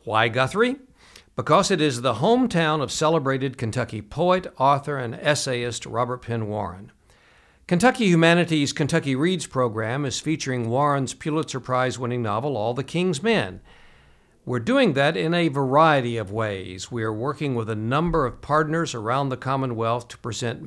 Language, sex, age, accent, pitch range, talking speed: English, male, 60-79, American, 115-160 Hz, 155 wpm